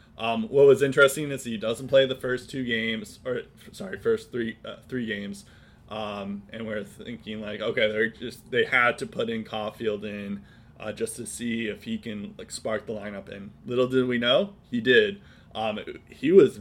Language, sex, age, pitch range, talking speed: English, male, 20-39, 110-140 Hz, 195 wpm